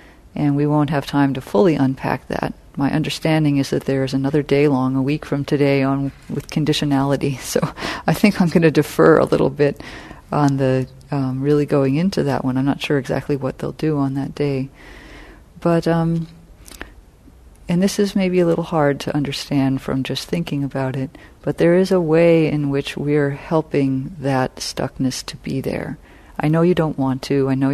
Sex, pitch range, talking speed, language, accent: female, 135-160 Hz, 195 wpm, English, American